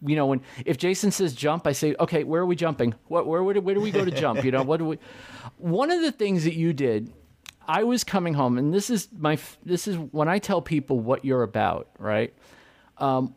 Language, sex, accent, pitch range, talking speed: English, male, American, 120-155 Hz, 245 wpm